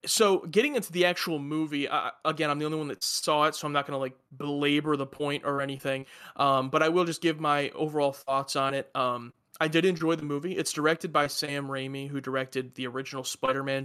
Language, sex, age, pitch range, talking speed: English, male, 20-39, 135-160 Hz, 230 wpm